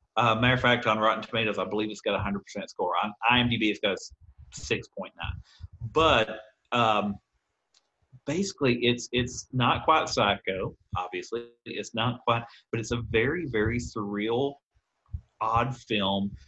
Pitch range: 105-120 Hz